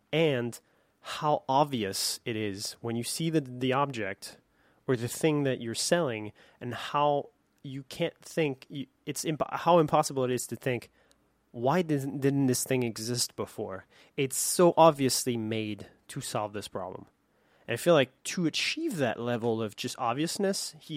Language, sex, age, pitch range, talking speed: English, male, 20-39, 120-155 Hz, 165 wpm